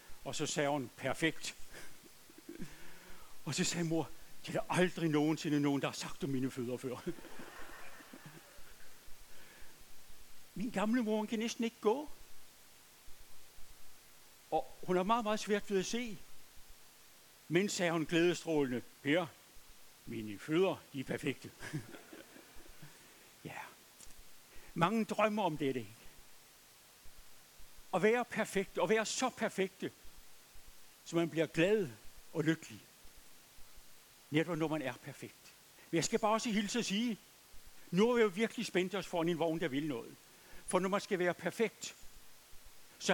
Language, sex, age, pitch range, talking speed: Danish, male, 60-79, 155-215 Hz, 140 wpm